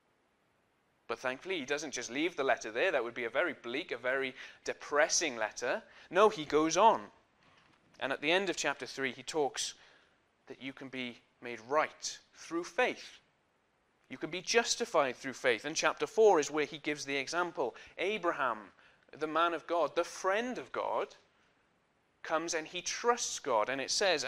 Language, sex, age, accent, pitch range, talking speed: English, male, 30-49, British, 140-195 Hz, 180 wpm